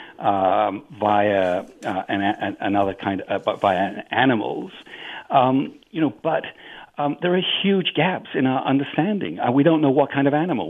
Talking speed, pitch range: 180 wpm, 110-135 Hz